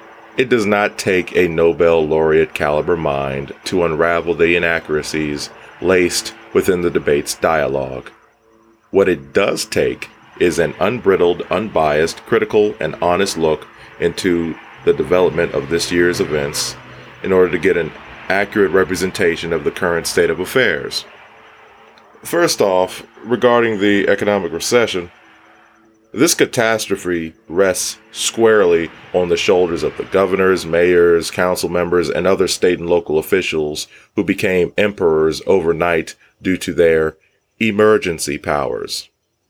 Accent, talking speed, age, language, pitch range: American, 130 wpm, 30-49, English, 80-110 Hz